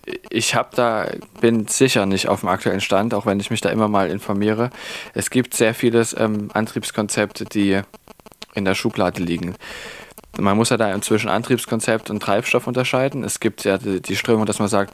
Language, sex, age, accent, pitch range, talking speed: German, male, 20-39, German, 95-115 Hz, 185 wpm